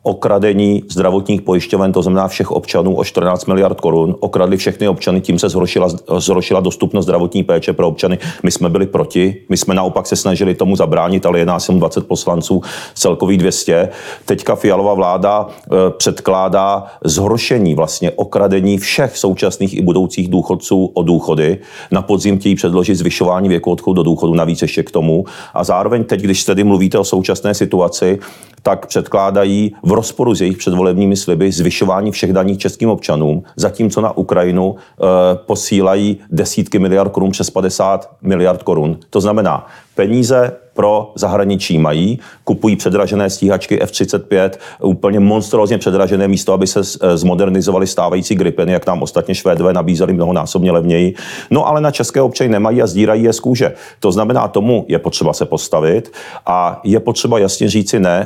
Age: 40-59